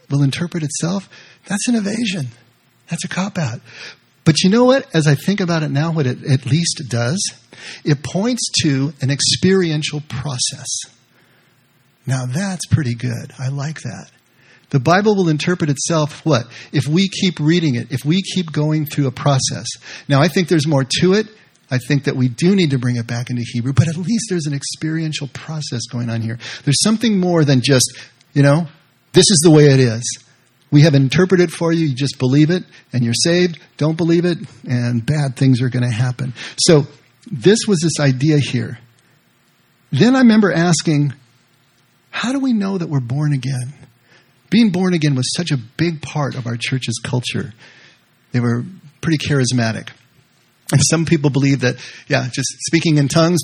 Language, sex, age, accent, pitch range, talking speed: English, male, 40-59, American, 130-175 Hz, 185 wpm